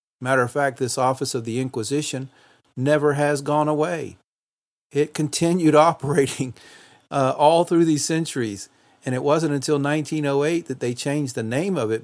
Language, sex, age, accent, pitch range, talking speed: English, male, 50-69, American, 115-140 Hz, 160 wpm